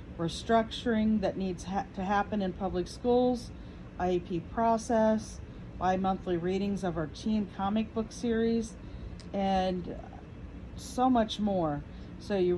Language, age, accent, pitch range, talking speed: English, 40-59, American, 175-220 Hz, 115 wpm